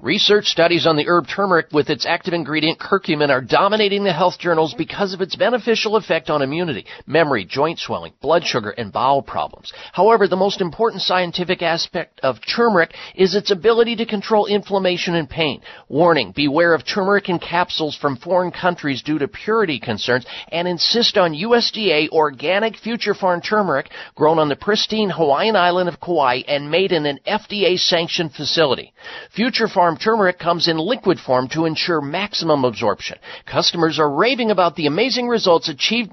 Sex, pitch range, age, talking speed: male, 160-210 Hz, 50-69, 170 wpm